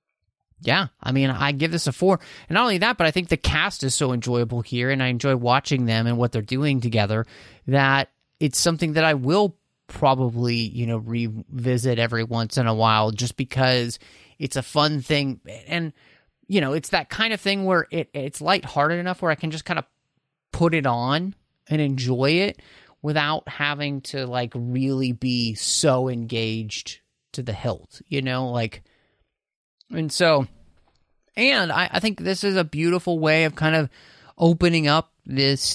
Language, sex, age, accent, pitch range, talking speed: English, male, 30-49, American, 125-165 Hz, 180 wpm